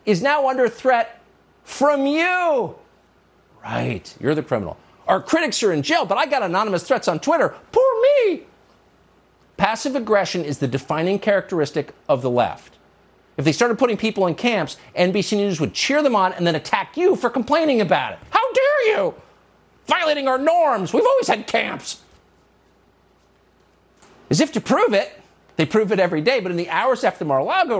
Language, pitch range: English, 190-295 Hz